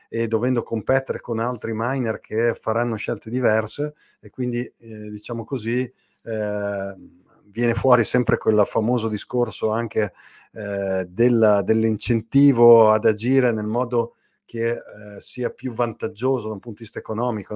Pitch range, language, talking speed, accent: 105-120 Hz, Italian, 140 wpm, native